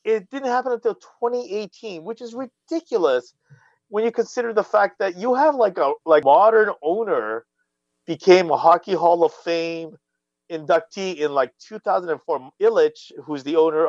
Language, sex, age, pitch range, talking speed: English, male, 30-49, 140-220 Hz, 150 wpm